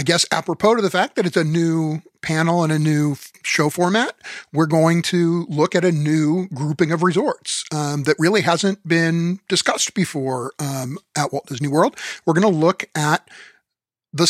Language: English